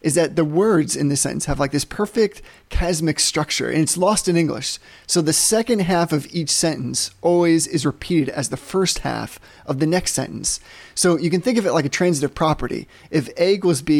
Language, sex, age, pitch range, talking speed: English, male, 30-49, 145-175 Hz, 215 wpm